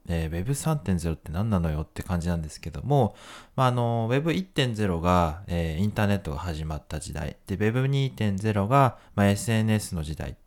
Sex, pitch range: male, 85-120 Hz